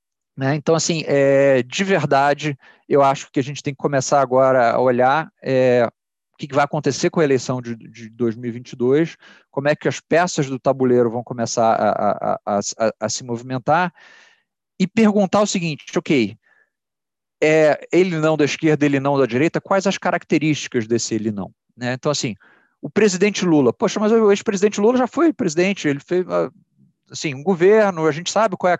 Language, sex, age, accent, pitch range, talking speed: Portuguese, male, 40-59, Brazilian, 125-165 Hz, 170 wpm